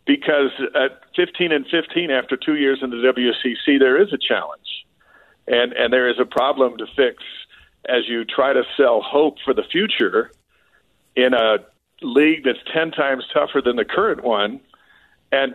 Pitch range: 130-160 Hz